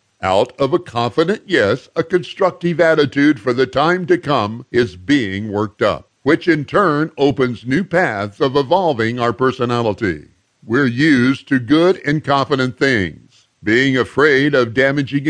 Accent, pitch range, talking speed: American, 120-165 Hz, 150 wpm